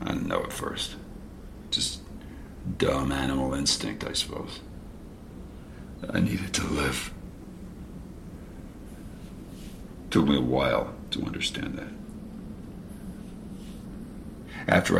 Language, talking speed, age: English, 90 wpm, 50-69